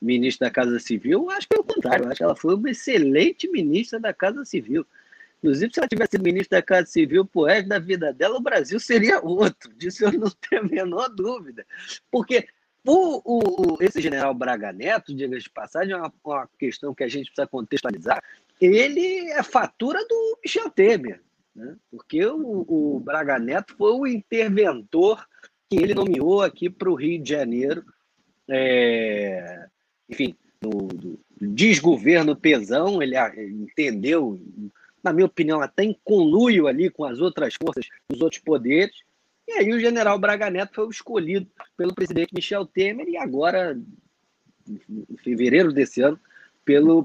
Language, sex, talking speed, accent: Portuguese, male, 160 wpm, Brazilian